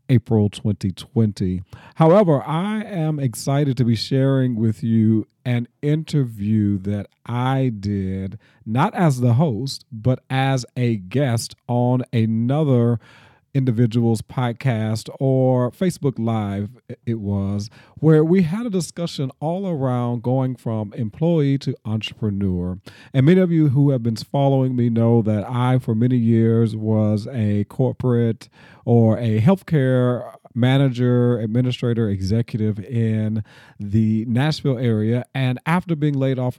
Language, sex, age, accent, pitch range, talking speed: English, male, 40-59, American, 110-135 Hz, 130 wpm